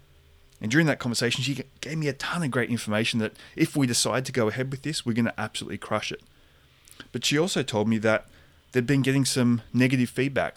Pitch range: 100-130 Hz